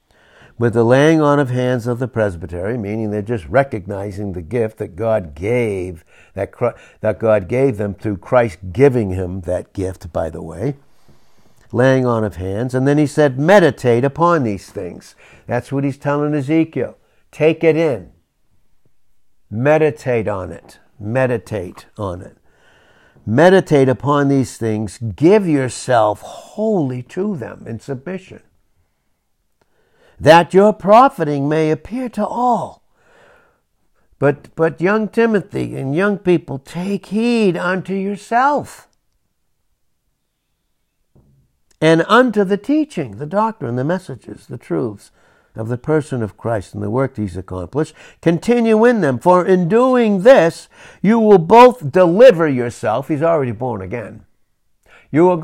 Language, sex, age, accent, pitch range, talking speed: English, male, 60-79, American, 110-180 Hz, 135 wpm